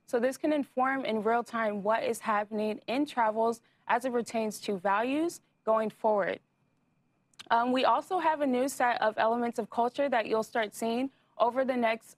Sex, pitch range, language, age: female, 210-265 Hz, English, 20-39